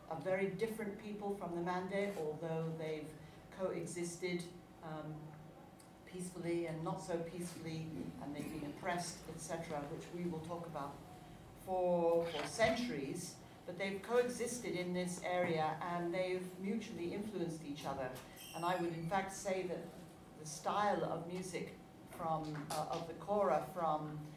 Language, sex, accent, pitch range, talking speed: English, female, British, 155-185 Hz, 145 wpm